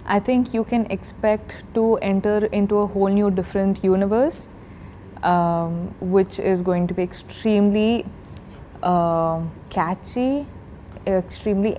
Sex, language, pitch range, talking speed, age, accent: female, Tamil, 180-215 Hz, 120 wpm, 20-39, native